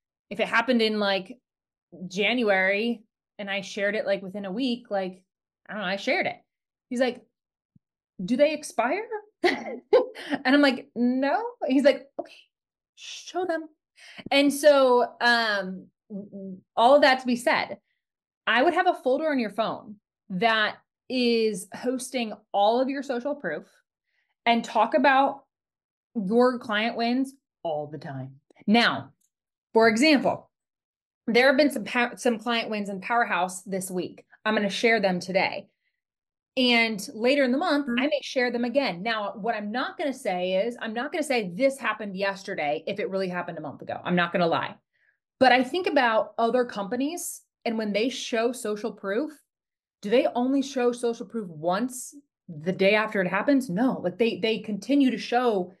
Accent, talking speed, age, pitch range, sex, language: American, 170 wpm, 20-39, 205-270 Hz, female, English